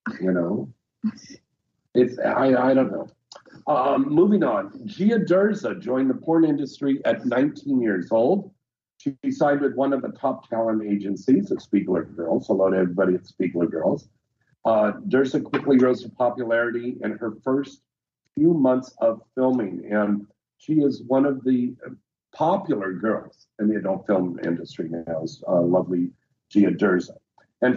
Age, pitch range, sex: 50-69, 110-150 Hz, male